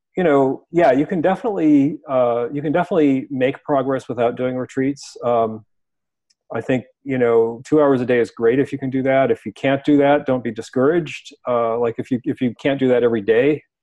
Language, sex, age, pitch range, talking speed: English, male, 40-59, 120-150 Hz, 215 wpm